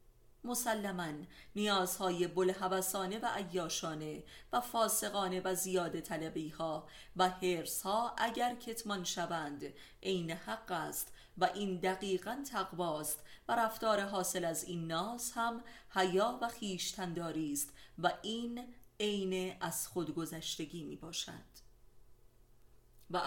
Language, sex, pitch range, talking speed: Persian, female, 165-200 Hz, 110 wpm